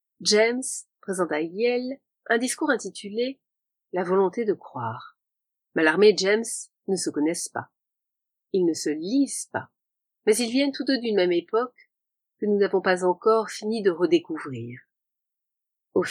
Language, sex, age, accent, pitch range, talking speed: French, female, 40-59, French, 185-245 Hz, 150 wpm